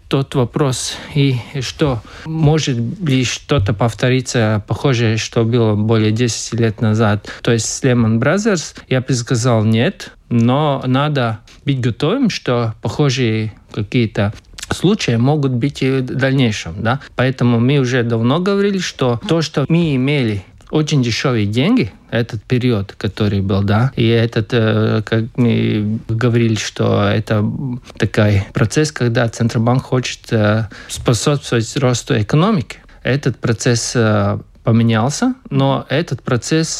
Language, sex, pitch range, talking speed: Russian, male, 115-140 Hz, 125 wpm